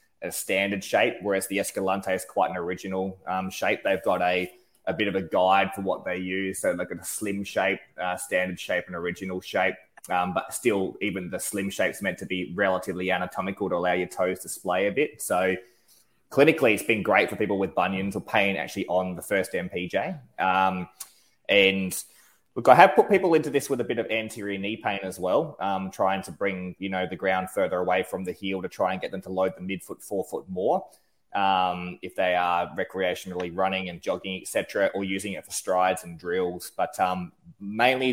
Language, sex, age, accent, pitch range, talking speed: English, male, 20-39, Australian, 90-95 Hz, 210 wpm